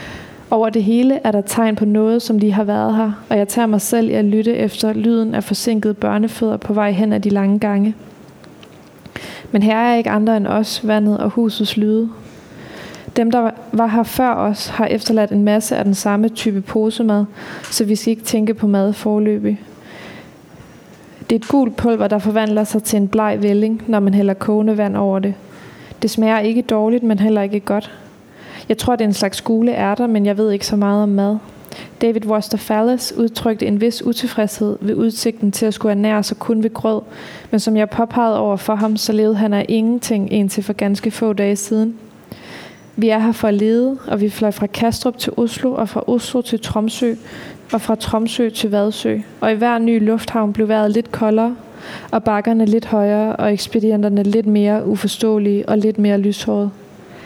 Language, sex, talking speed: Danish, female, 200 wpm